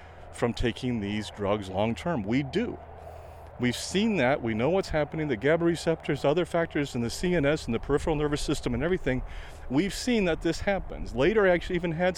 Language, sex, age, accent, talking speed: English, male, 40-59, American, 190 wpm